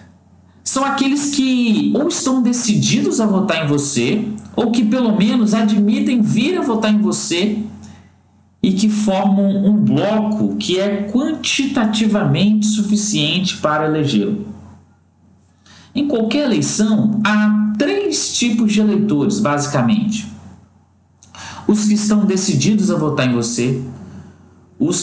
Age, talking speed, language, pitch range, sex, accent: 50-69, 115 wpm, Portuguese, 135-220 Hz, male, Brazilian